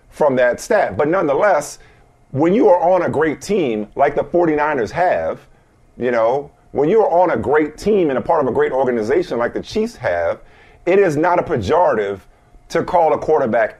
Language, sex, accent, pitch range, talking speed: English, male, American, 135-180 Hz, 195 wpm